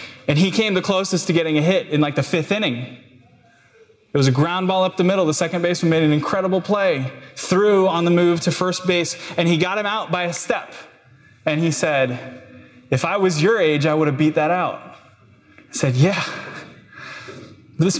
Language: English